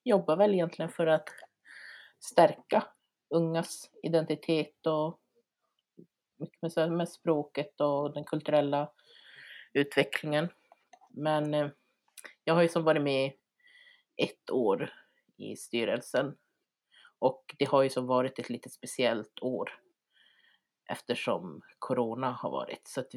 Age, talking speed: 30-49, 110 wpm